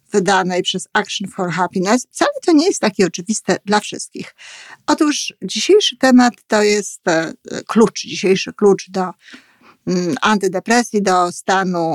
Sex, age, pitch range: female, 50-69, 185-220 Hz